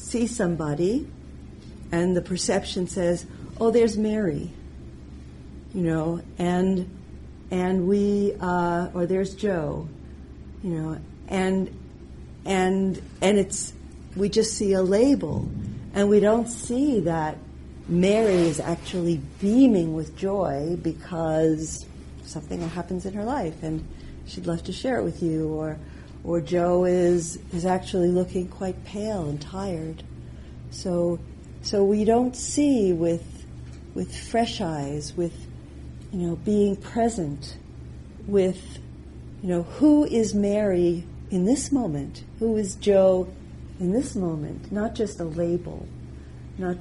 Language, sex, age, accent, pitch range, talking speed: English, female, 50-69, American, 140-195 Hz, 125 wpm